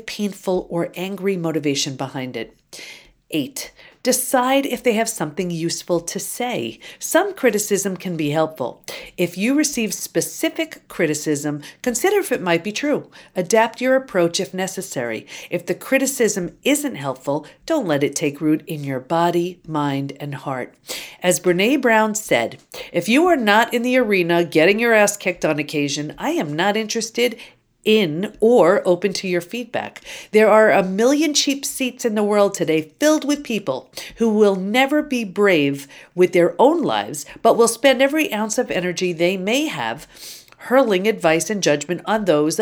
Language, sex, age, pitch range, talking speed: English, female, 50-69, 170-245 Hz, 165 wpm